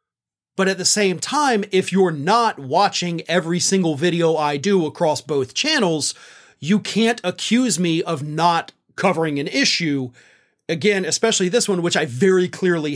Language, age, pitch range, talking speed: English, 30-49, 170-225 Hz, 155 wpm